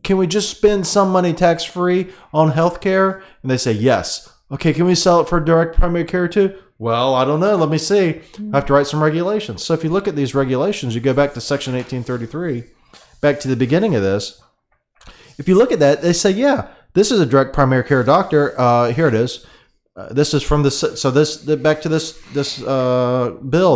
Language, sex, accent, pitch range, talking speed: English, male, American, 120-165 Hz, 220 wpm